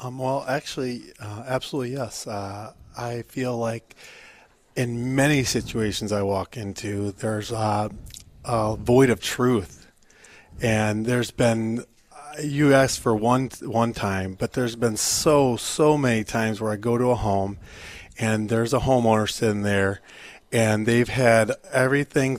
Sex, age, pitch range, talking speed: male, 30-49, 105-125 Hz, 145 wpm